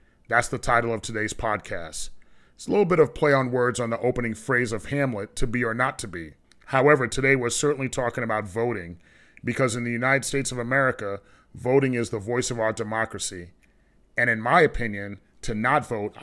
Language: English